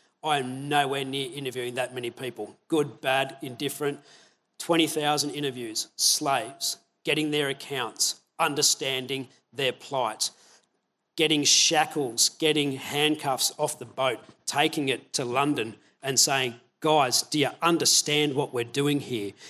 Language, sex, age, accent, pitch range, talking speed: English, male, 40-59, Australian, 125-155 Hz, 125 wpm